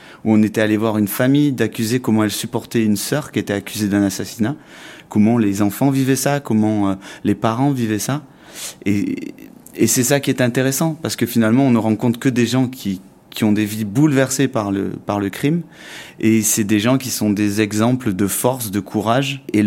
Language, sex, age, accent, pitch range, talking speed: French, male, 30-49, French, 105-135 Hz, 205 wpm